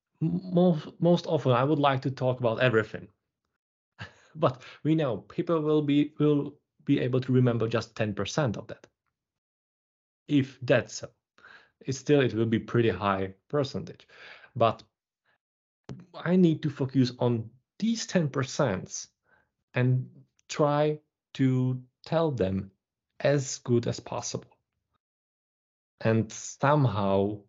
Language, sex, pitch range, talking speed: Czech, male, 105-140 Hz, 120 wpm